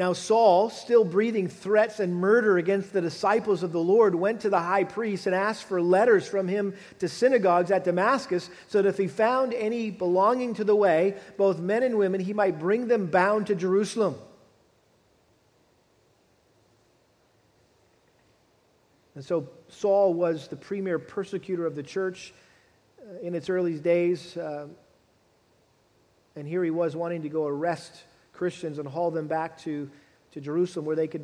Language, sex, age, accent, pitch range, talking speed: English, male, 40-59, American, 175-220 Hz, 160 wpm